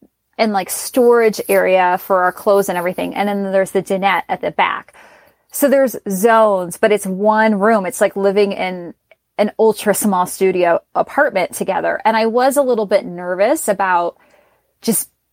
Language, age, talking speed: English, 30-49, 170 wpm